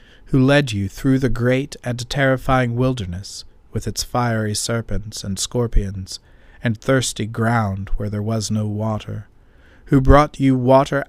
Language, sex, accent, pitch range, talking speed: English, male, American, 100-130 Hz, 145 wpm